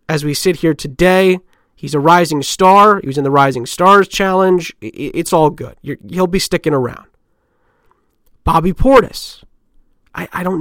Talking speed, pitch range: 155 wpm, 145-210 Hz